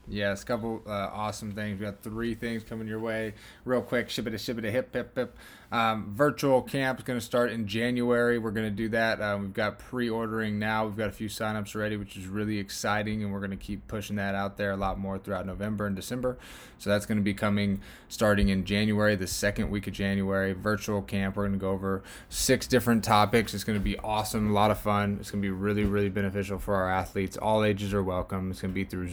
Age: 20-39